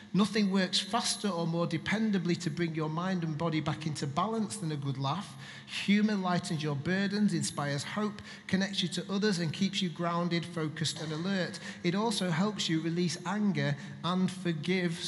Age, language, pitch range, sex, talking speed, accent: 40-59, English, 150-200 Hz, male, 175 wpm, British